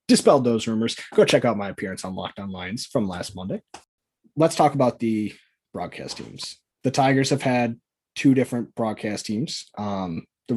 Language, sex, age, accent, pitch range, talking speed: English, male, 20-39, American, 110-165 Hz, 170 wpm